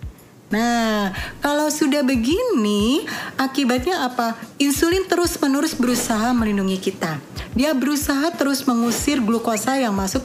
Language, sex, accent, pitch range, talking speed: Indonesian, female, native, 225-290 Hz, 105 wpm